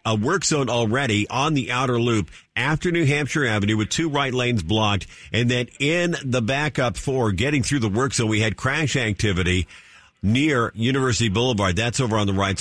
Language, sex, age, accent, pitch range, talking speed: English, male, 50-69, American, 105-125 Hz, 190 wpm